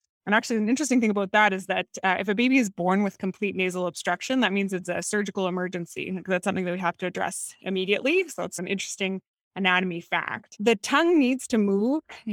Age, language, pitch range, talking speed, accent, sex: 20-39, English, 185-225 Hz, 215 wpm, American, female